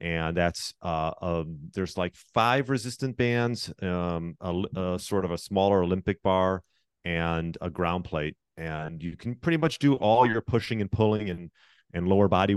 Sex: male